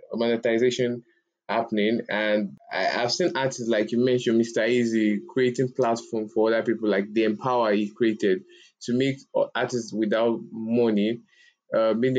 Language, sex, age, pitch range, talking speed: English, male, 20-39, 110-130 Hz, 145 wpm